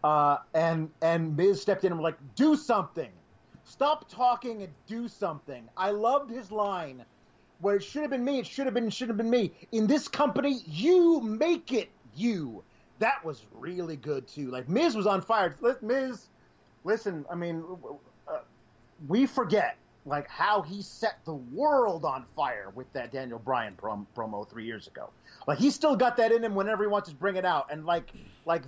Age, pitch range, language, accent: 30-49, 160-225 Hz, English, American